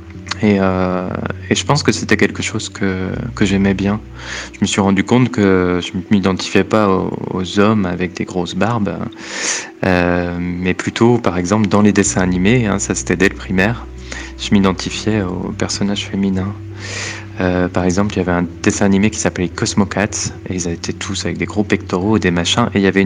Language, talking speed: French, 205 wpm